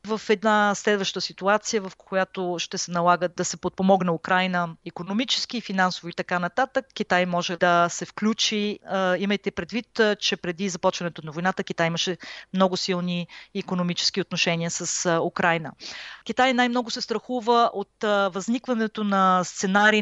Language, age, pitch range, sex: Bulgarian, 30-49, 175-210 Hz, female